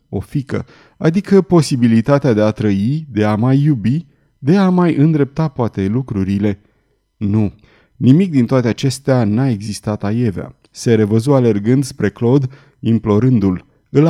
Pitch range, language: 105-145 Hz, Romanian